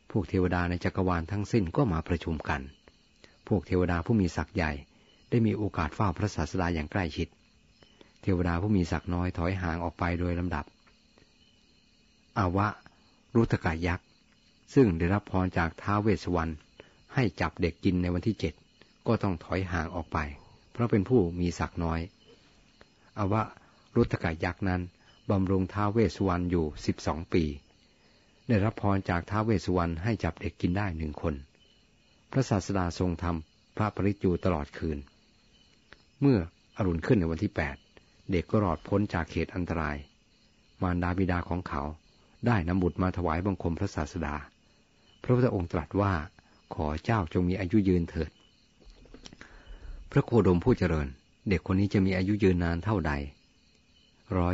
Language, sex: Thai, male